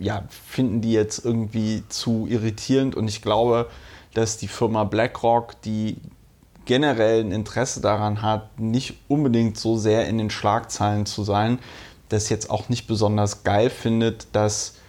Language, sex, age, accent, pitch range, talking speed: German, male, 30-49, German, 110-140 Hz, 145 wpm